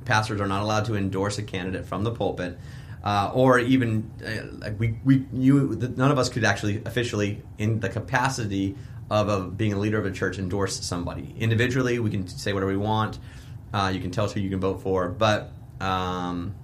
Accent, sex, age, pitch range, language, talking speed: American, male, 30-49, 100-125 Hz, English, 210 wpm